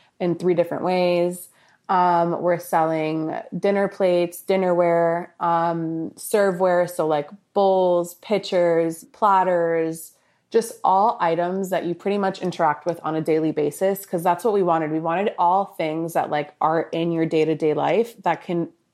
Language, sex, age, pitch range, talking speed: English, female, 20-39, 165-190 Hz, 150 wpm